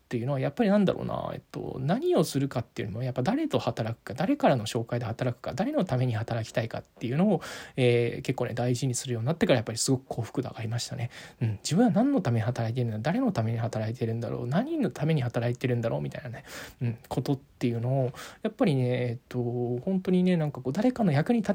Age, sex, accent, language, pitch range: 20-39, male, native, Japanese, 120-160 Hz